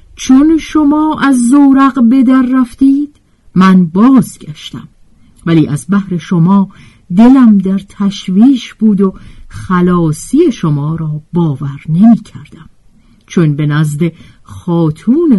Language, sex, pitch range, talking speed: Persian, female, 155-245 Hz, 105 wpm